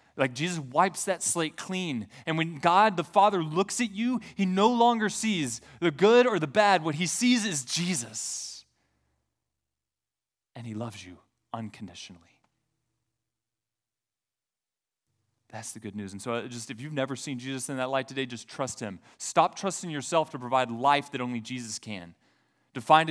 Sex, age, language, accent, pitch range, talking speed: male, 30-49, English, American, 120-165 Hz, 165 wpm